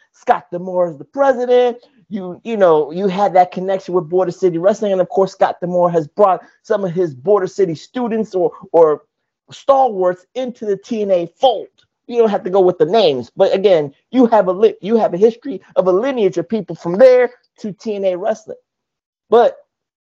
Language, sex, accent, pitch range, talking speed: English, male, American, 185-260 Hz, 195 wpm